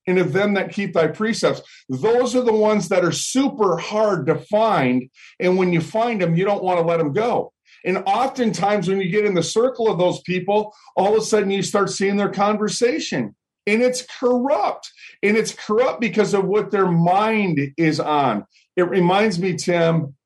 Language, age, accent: English, 50-69, American